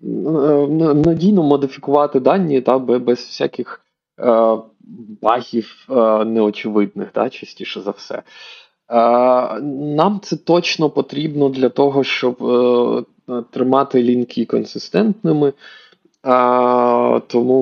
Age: 20-39